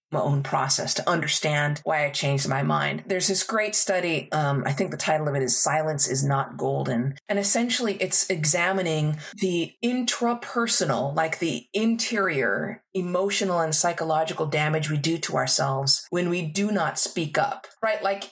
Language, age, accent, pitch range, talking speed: English, 30-49, American, 155-205 Hz, 165 wpm